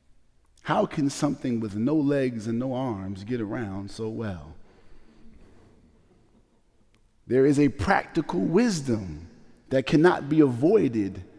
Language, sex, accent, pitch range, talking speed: English, male, American, 110-145 Hz, 115 wpm